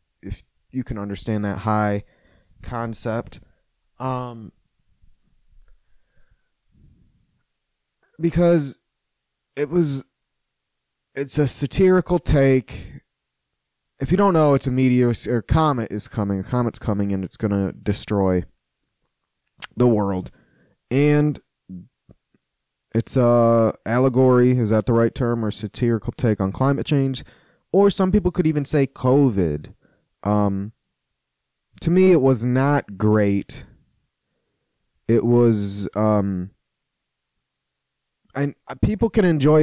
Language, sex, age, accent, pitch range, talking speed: English, male, 20-39, American, 105-140 Hz, 110 wpm